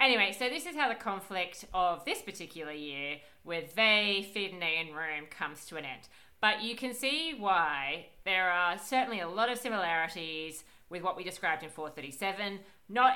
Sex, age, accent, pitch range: female, 40-59, Australian, 165-205 Hz